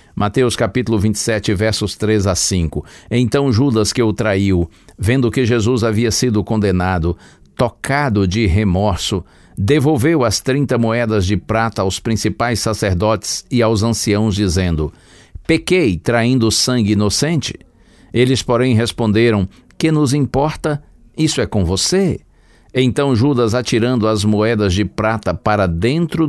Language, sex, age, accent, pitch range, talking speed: Portuguese, male, 60-79, Brazilian, 95-125 Hz, 130 wpm